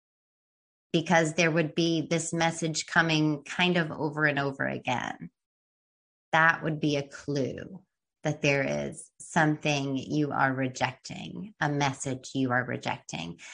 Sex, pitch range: female, 145-190 Hz